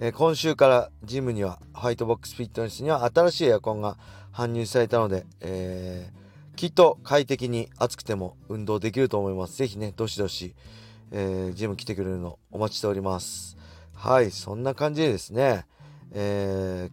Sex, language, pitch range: male, Japanese, 95-120 Hz